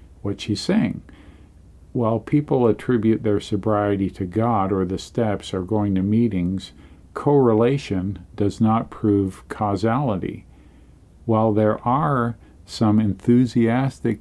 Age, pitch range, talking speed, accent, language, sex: 50-69, 95-115 Hz, 115 wpm, American, English, male